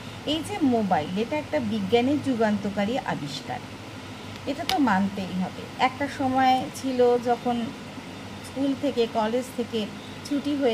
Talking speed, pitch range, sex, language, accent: 105 wpm, 200-255 Hz, female, Bengali, native